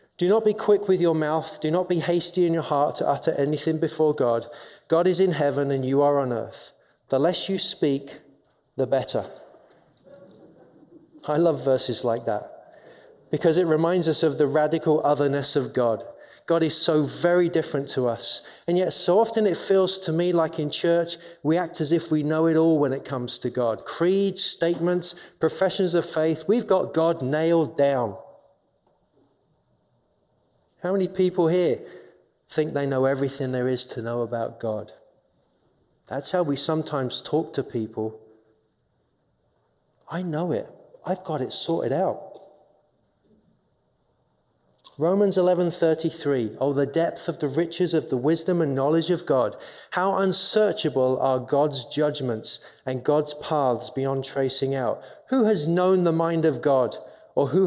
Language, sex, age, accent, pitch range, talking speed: English, male, 30-49, British, 135-175 Hz, 165 wpm